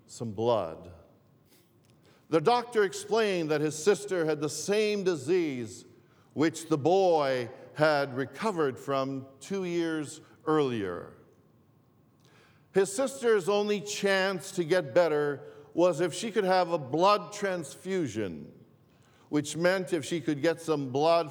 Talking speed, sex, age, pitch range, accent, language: 125 wpm, male, 50-69, 135-195 Hz, American, English